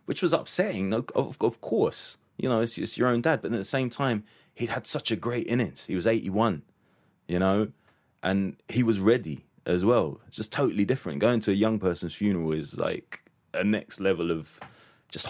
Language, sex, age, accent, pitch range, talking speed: English, male, 20-39, British, 95-115 Hz, 205 wpm